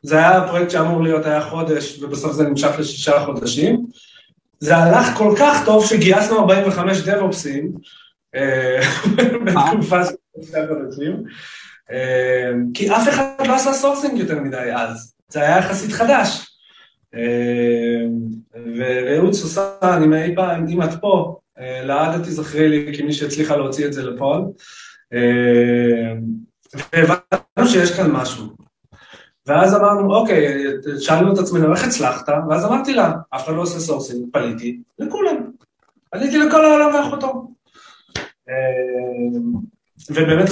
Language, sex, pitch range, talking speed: Hebrew, male, 140-205 Hz, 70 wpm